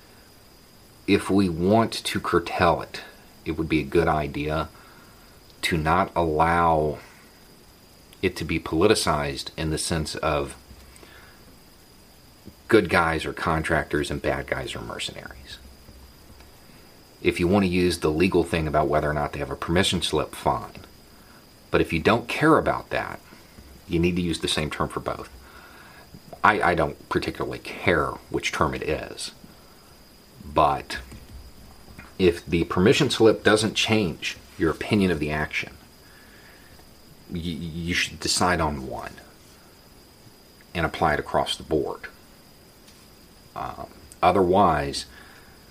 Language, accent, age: English, American, 40-59